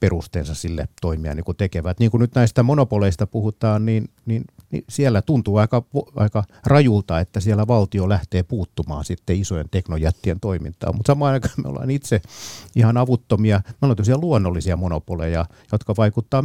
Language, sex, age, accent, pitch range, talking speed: Finnish, male, 50-69, native, 100-130 Hz, 155 wpm